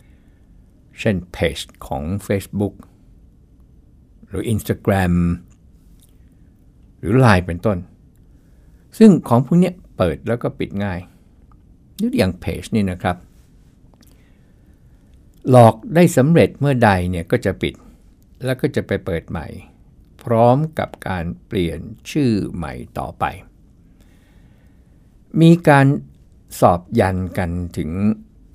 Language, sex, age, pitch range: Thai, male, 60-79, 90-120 Hz